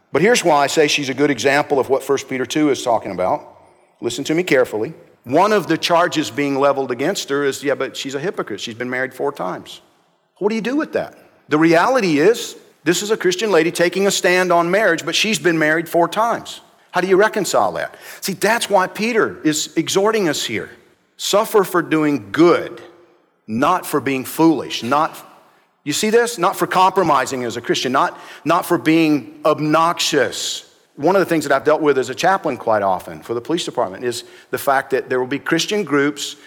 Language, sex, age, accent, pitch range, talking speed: English, male, 50-69, American, 145-200 Hz, 210 wpm